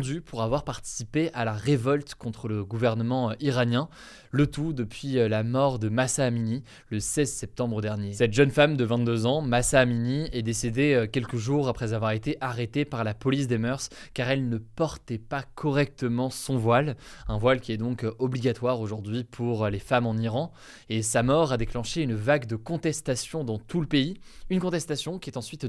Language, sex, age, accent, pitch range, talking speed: French, male, 20-39, French, 115-140 Hz, 190 wpm